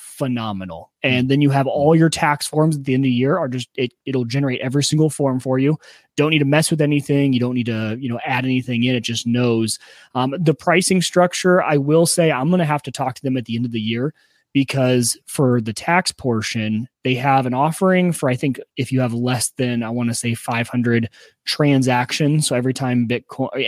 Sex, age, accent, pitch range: male, 20-39, American, 120-145 Hz